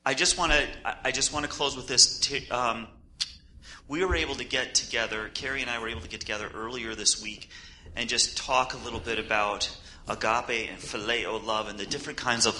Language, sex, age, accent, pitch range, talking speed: English, male, 30-49, American, 105-130 Hz, 200 wpm